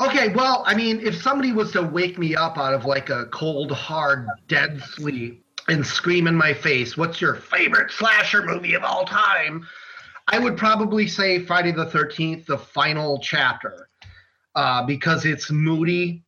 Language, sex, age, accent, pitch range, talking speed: English, male, 30-49, American, 135-185 Hz, 170 wpm